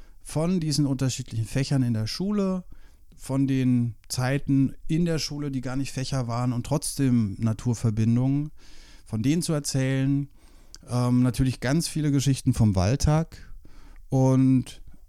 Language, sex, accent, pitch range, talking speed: German, male, German, 105-140 Hz, 130 wpm